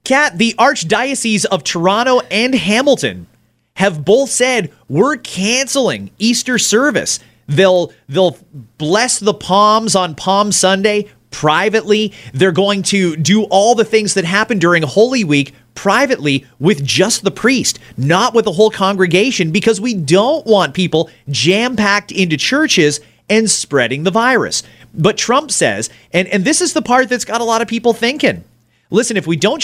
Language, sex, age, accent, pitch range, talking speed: English, male, 30-49, American, 160-225 Hz, 155 wpm